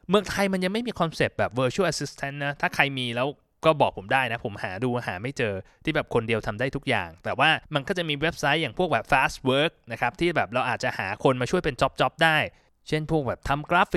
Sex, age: male, 20-39